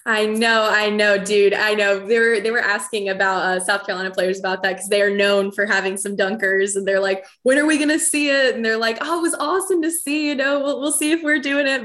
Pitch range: 195-250 Hz